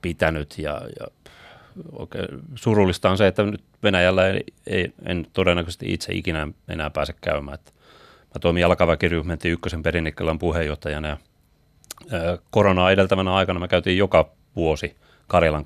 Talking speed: 125 wpm